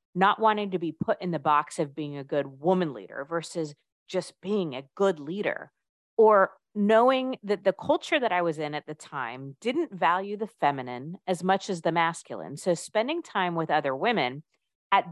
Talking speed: 190 wpm